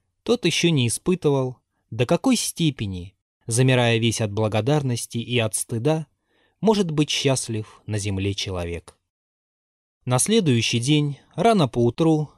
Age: 20-39